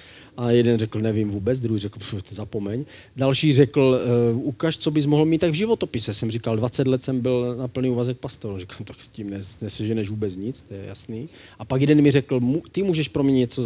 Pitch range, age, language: 110-135 Hz, 40-59, Czech